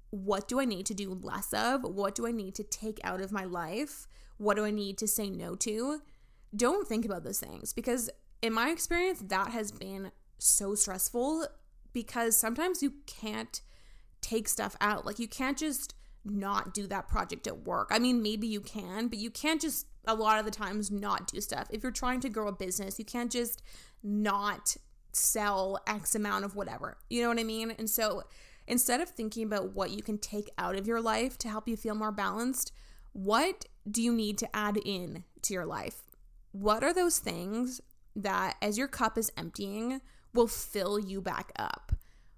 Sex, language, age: female, English, 20-39